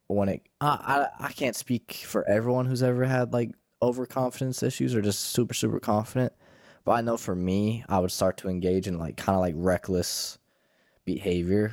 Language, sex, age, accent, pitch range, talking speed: English, male, 20-39, American, 85-105 Hz, 185 wpm